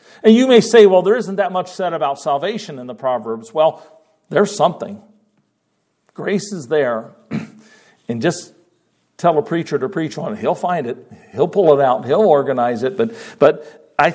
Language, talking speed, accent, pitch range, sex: English, 180 wpm, American, 150-205 Hz, male